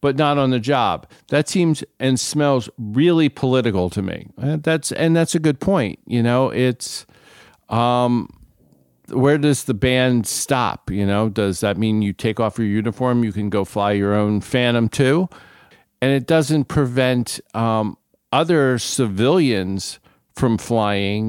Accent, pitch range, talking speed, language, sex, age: American, 100-130 Hz, 155 wpm, English, male, 50-69